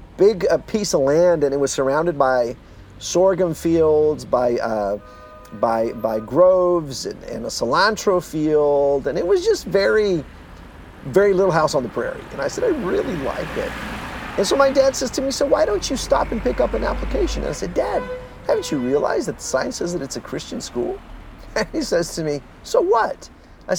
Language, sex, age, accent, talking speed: English, male, 40-59, American, 195 wpm